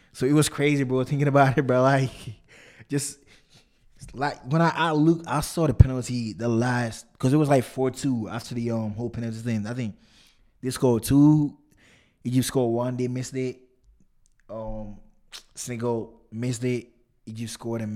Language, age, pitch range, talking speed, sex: English, 20-39, 115-140 Hz, 175 wpm, male